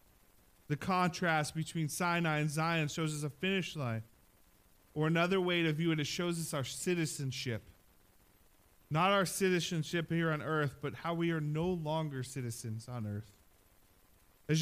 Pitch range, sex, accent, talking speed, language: 135-180 Hz, male, American, 155 wpm, English